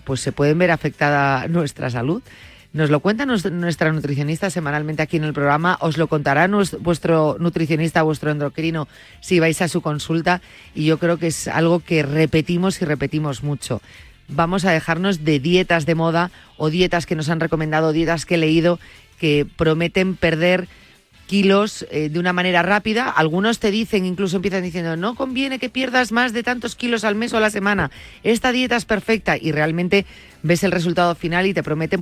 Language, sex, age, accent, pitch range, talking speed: Spanish, female, 30-49, Spanish, 150-190 Hz, 185 wpm